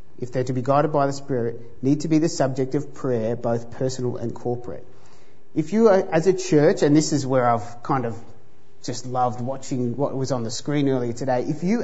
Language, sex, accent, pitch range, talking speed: English, male, Australian, 125-160 Hz, 225 wpm